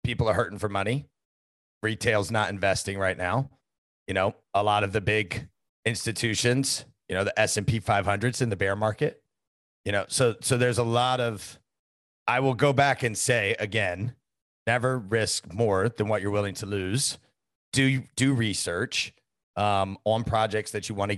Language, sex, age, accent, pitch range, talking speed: English, male, 30-49, American, 95-120 Hz, 180 wpm